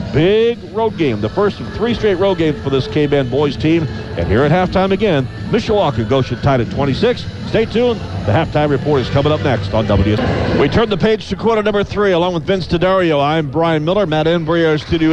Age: 40-59